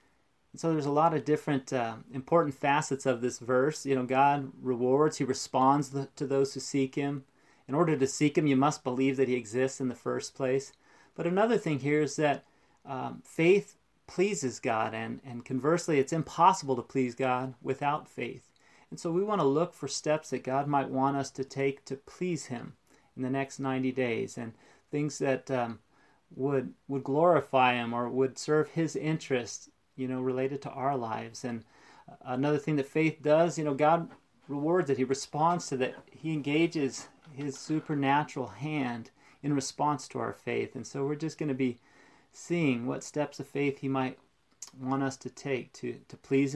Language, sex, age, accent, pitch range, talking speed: English, male, 30-49, American, 130-150 Hz, 190 wpm